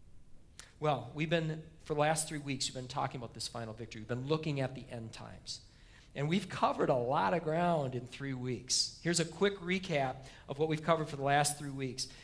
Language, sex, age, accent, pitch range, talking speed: English, male, 40-59, American, 155-225 Hz, 220 wpm